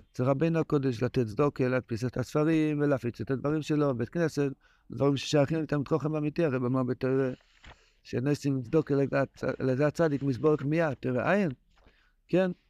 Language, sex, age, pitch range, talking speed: Hebrew, male, 60-79, 130-165 Hz, 150 wpm